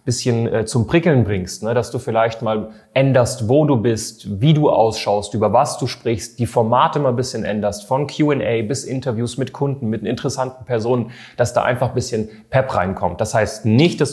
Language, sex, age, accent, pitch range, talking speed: German, male, 30-49, German, 110-135 Hz, 195 wpm